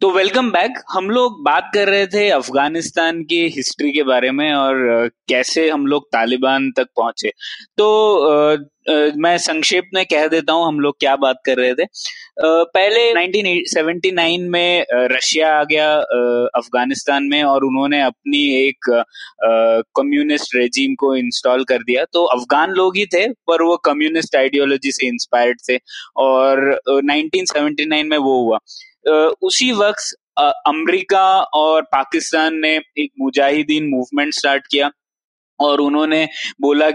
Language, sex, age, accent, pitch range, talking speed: Hindi, male, 20-39, native, 140-180 Hz, 140 wpm